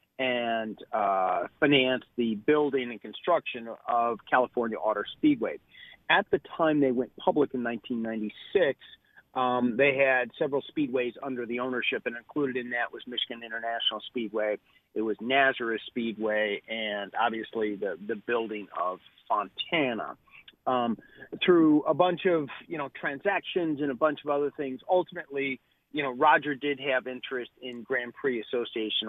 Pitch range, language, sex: 115-145 Hz, English, male